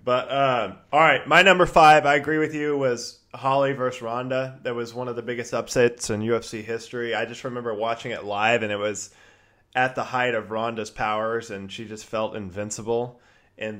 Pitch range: 110-130 Hz